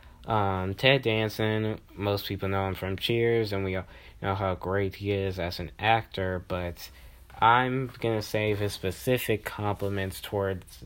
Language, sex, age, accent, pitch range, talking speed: English, male, 20-39, American, 90-105 Hz, 155 wpm